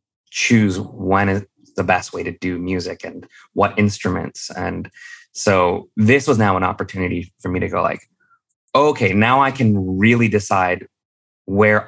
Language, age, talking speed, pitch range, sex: English, 20-39, 155 wpm, 95-120 Hz, male